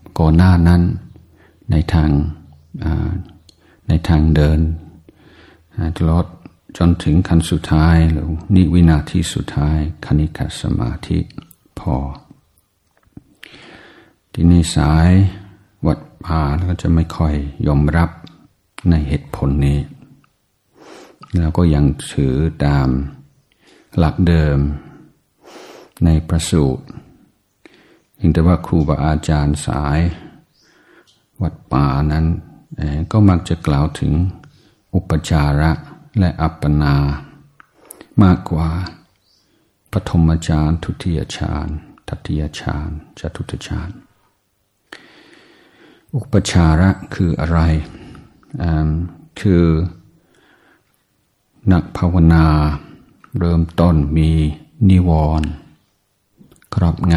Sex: male